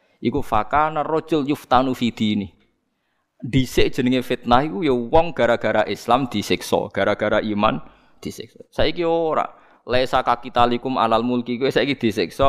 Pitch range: 105-145 Hz